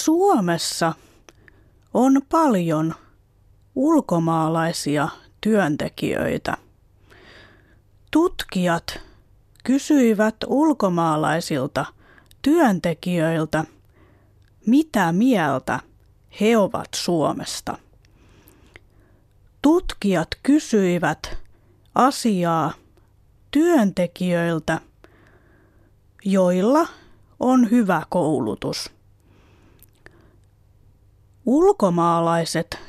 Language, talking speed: Finnish, 40 wpm